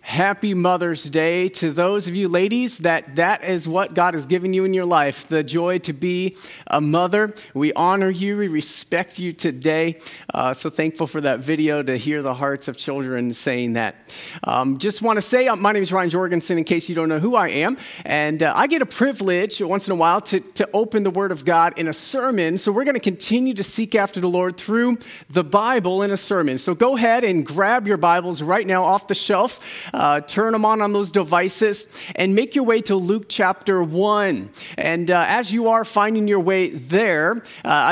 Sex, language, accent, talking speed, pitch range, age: male, English, American, 215 wpm, 170-225 Hz, 40-59